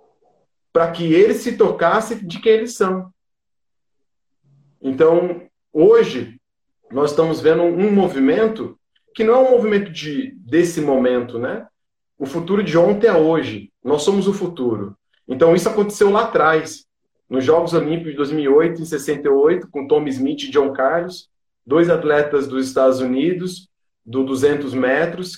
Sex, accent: male, Brazilian